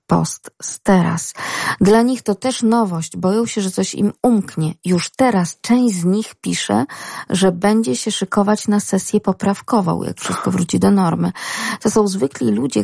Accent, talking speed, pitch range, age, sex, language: native, 170 wpm, 175-215 Hz, 40-59, female, Polish